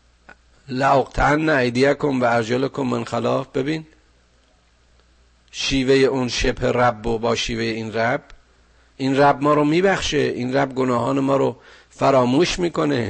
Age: 50-69